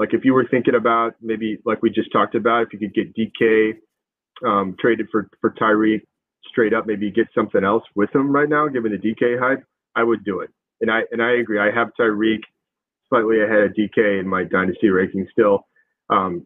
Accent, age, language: American, 30-49, English